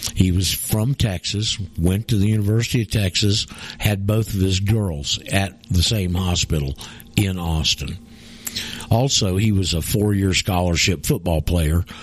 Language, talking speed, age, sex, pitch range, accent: English, 145 wpm, 50-69, male, 90-115 Hz, American